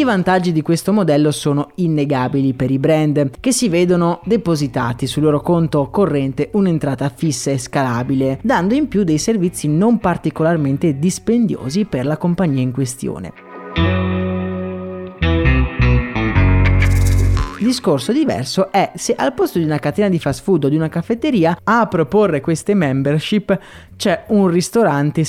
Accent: native